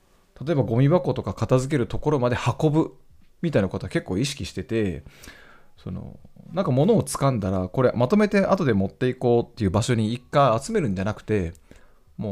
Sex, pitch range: male, 95-145 Hz